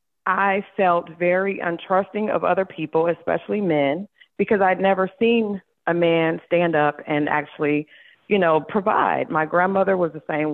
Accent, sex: American, female